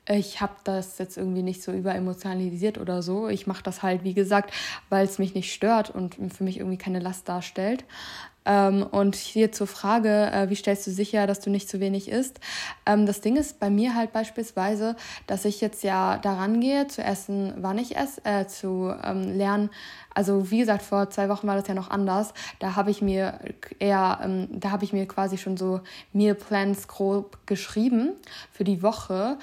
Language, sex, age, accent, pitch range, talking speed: German, female, 20-39, German, 190-210 Hz, 200 wpm